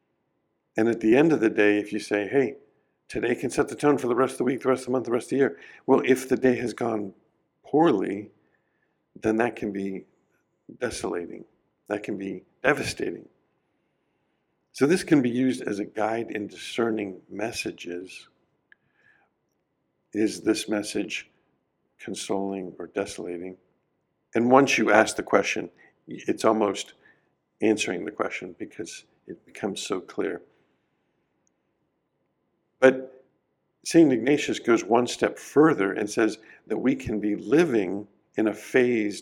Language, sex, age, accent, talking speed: English, male, 50-69, American, 150 wpm